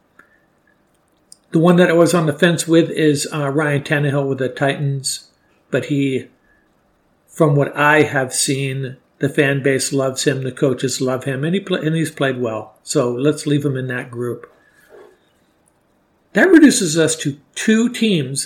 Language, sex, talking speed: English, male, 165 wpm